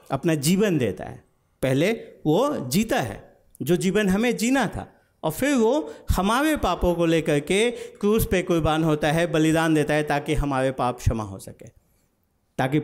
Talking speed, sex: 170 wpm, male